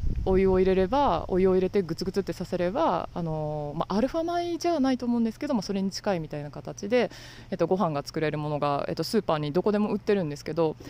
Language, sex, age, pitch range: Japanese, female, 20-39, 160-215 Hz